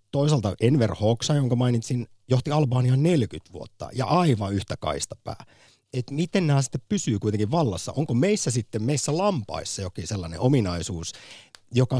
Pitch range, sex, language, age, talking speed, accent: 95-135 Hz, male, Finnish, 50-69, 150 wpm, native